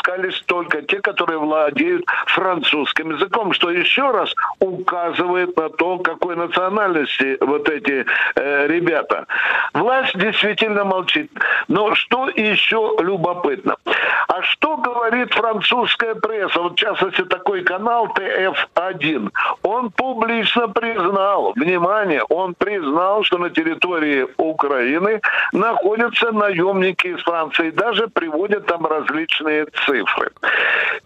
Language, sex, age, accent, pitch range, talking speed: Russian, male, 60-79, native, 170-230 Hz, 105 wpm